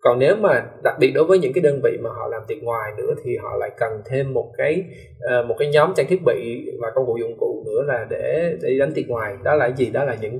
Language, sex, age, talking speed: Vietnamese, male, 20-39, 275 wpm